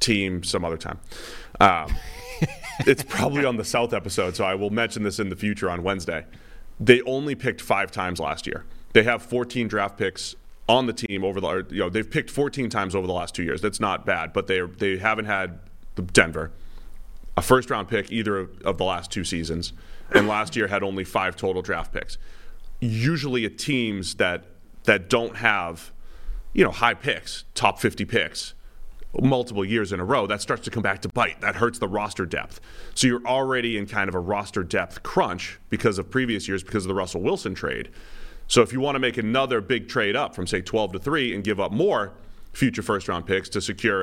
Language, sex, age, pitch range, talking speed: English, male, 30-49, 95-120 Hz, 215 wpm